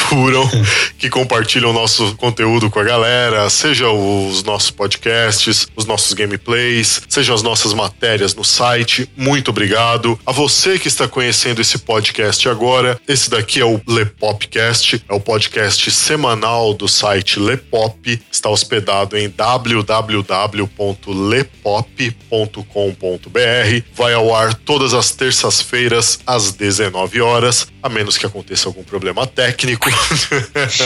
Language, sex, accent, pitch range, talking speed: Portuguese, male, Brazilian, 105-130 Hz, 125 wpm